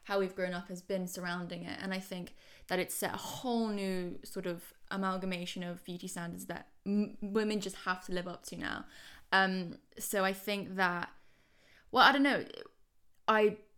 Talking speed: 185 wpm